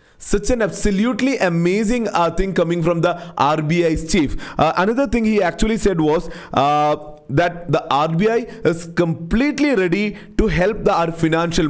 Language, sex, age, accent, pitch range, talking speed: English, male, 30-49, Indian, 155-210 Hz, 155 wpm